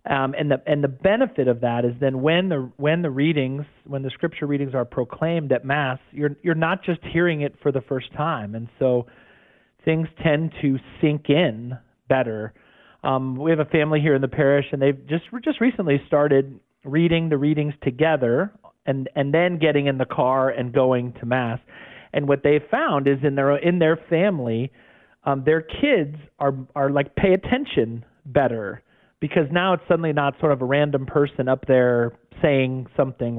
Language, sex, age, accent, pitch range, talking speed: English, male, 40-59, American, 130-160 Hz, 185 wpm